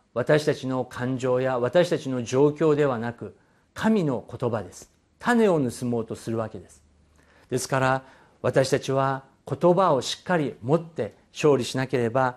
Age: 50-69